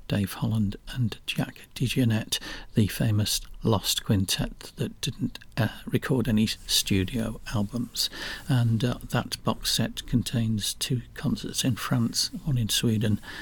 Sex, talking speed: male, 130 wpm